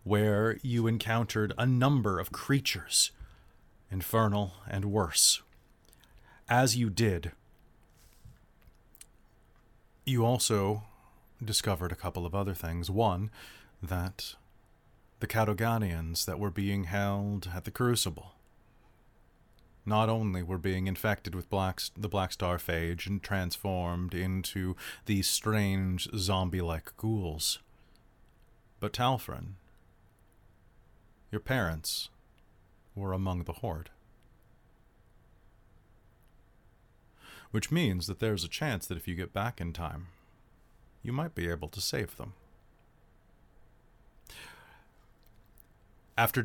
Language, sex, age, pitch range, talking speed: English, male, 30-49, 95-115 Hz, 100 wpm